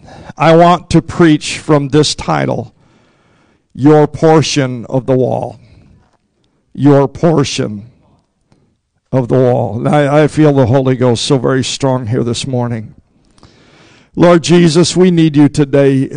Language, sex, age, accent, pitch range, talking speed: English, male, 50-69, American, 140-160 Hz, 130 wpm